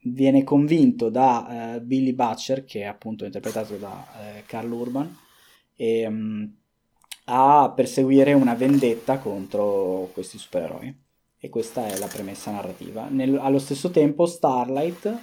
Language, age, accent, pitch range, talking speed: Italian, 20-39, native, 110-135 Hz, 115 wpm